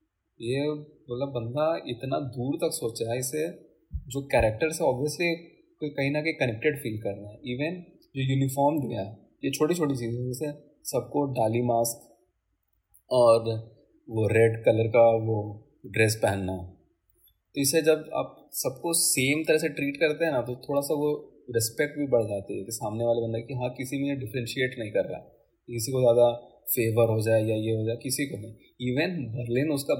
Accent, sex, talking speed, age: native, male, 190 wpm, 20-39